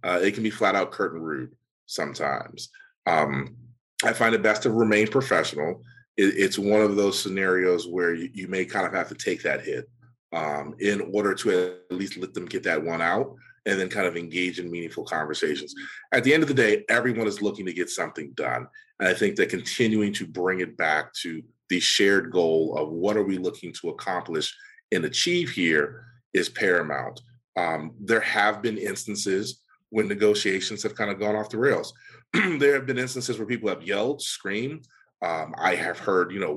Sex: male